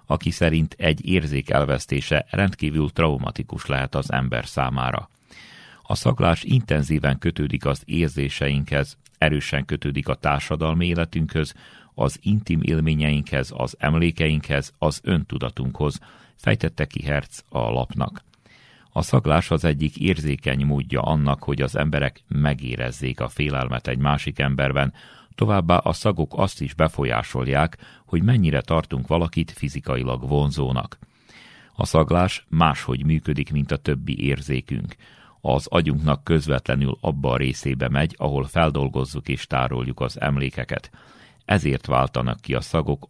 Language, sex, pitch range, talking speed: Hungarian, male, 65-80 Hz, 120 wpm